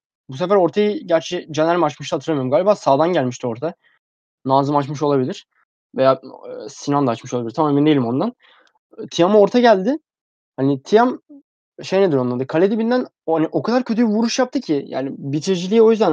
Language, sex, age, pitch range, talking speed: Turkish, male, 20-39, 140-185 Hz, 175 wpm